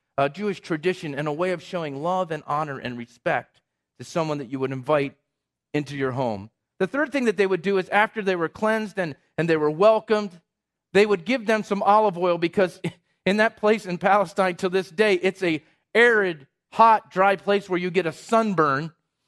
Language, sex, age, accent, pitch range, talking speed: English, male, 40-59, American, 160-215 Hz, 205 wpm